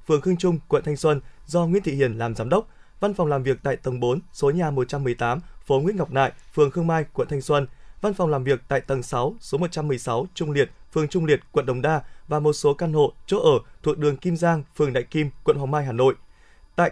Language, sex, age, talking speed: Vietnamese, male, 20-39, 250 wpm